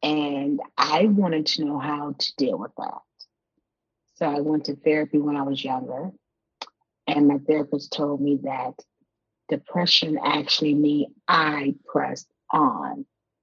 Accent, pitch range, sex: American, 145-175 Hz, female